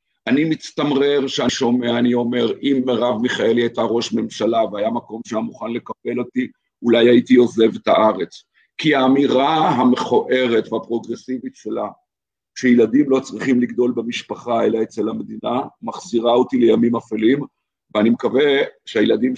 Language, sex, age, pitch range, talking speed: Hebrew, male, 50-69, 110-130 Hz, 135 wpm